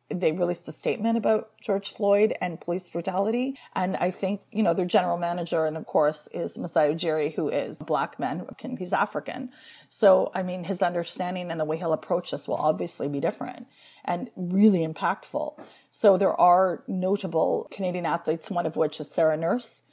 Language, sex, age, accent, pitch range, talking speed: English, female, 30-49, American, 170-205 Hz, 185 wpm